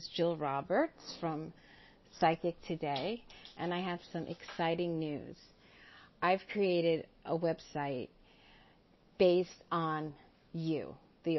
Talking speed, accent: 100 wpm, American